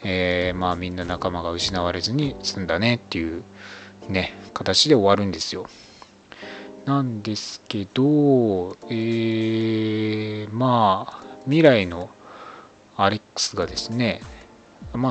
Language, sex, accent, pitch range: Japanese, male, native, 90-115 Hz